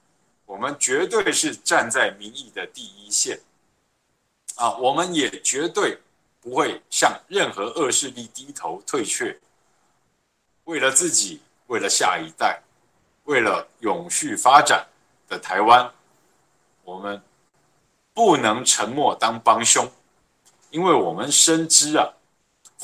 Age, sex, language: 50-69, male, Chinese